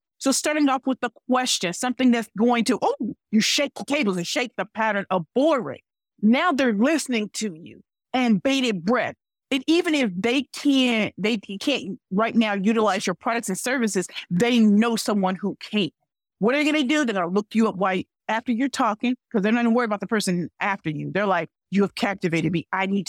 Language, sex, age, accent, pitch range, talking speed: English, female, 50-69, American, 190-245 Hz, 215 wpm